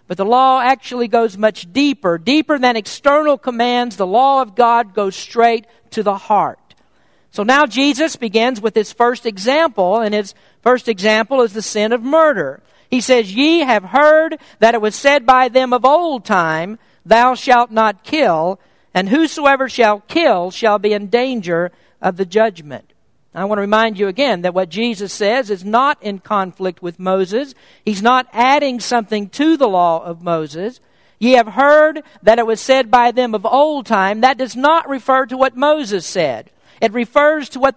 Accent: American